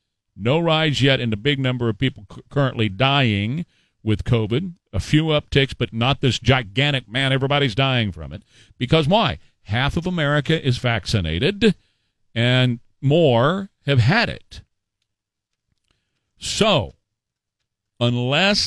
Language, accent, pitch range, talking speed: English, American, 120-165 Hz, 125 wpm